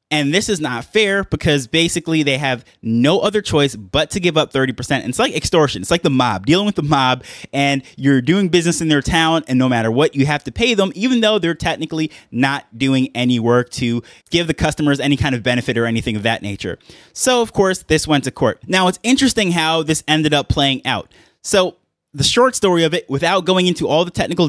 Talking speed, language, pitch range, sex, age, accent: 230 wpm, English, 130-170 Hz, male, 20-39, American